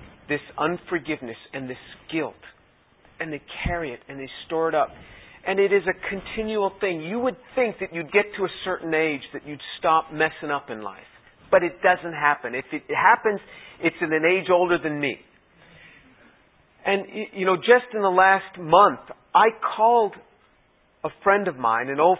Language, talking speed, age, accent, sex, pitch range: English, 180 wpm, 50-69, American, male, 140-190 Hz